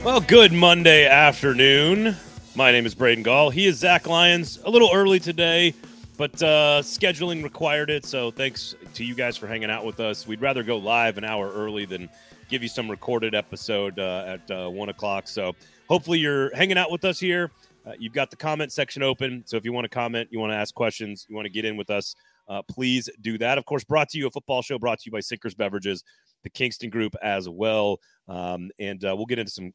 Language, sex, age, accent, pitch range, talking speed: English, male, 30-49, American, 105-145 Hz, 230 wpm